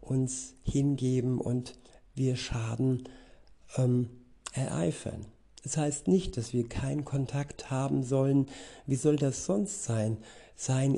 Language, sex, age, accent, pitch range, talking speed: German, male, 60-79, German, 120-140 Hz, 115 wpm